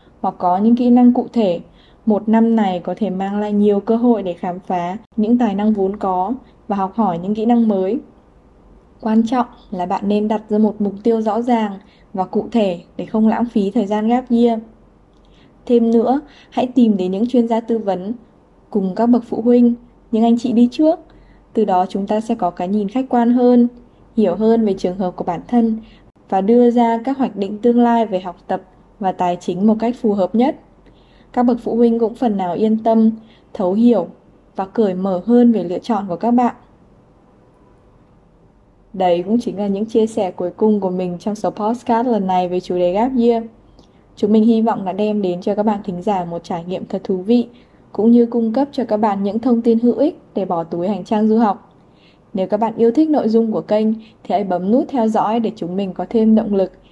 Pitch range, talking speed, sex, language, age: 195-235 Hz, 225 wpm, female, Vietnamese, 10-29